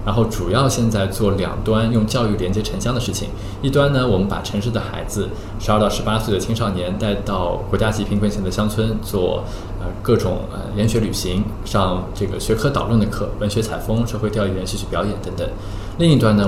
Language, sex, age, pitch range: Chinese, male, 20-39, 95-115 Hz